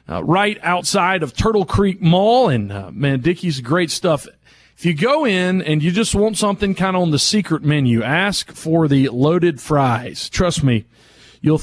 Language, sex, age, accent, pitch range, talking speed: English, male, 40-59, American, 140-185 Hz, 185 wpm